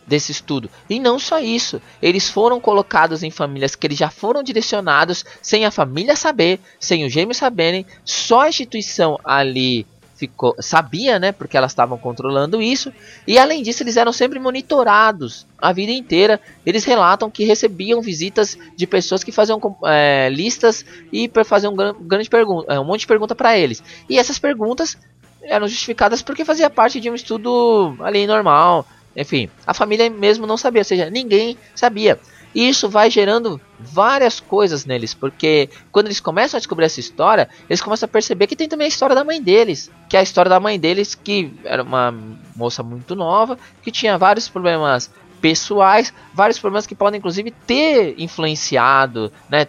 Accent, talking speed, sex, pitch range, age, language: Brazilian, 175 wpm, male, 160-235 Hz, 20-39, Portuguese